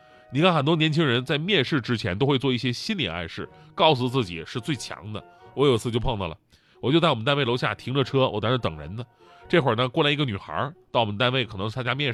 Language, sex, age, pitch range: Chinese, male, 20-39, 125-195 Hz